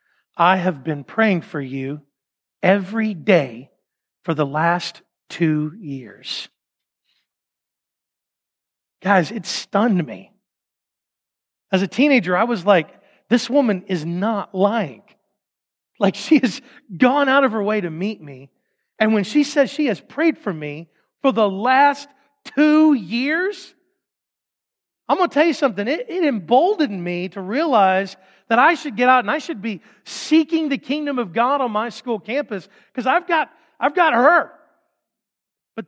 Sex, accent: male, American